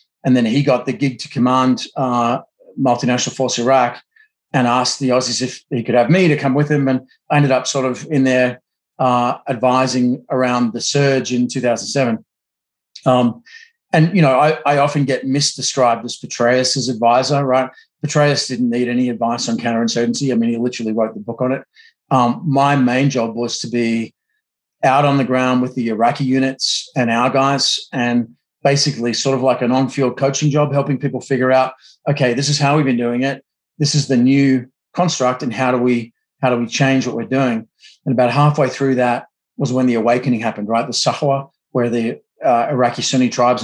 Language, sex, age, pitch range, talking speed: English, male, 30-49, 120-140 Hz, 195 wpm